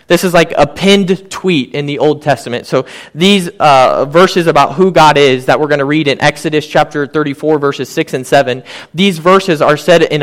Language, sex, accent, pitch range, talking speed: English, male, American, 150-195 Hz, 210 wpm